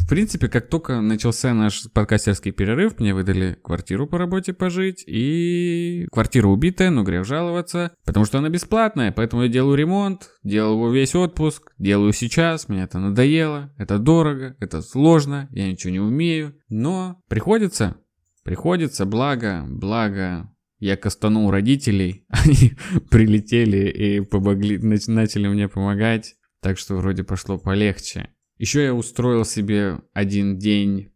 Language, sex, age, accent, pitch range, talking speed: Russian, male, 20-39, native, 95-125 Hz, 135 wpm